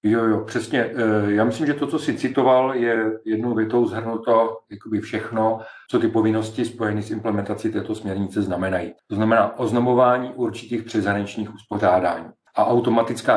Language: Czech